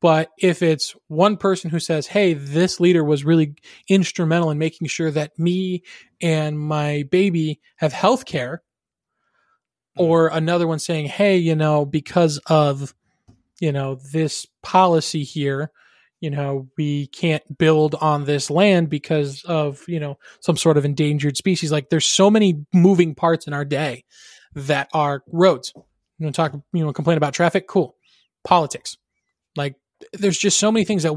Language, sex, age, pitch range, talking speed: English, male, 20-39, 150-175 Hz, 160 wpm